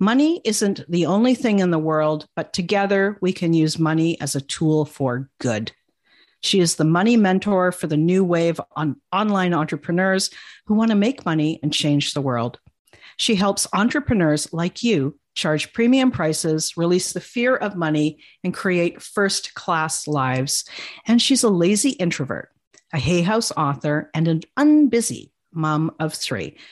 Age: 50-69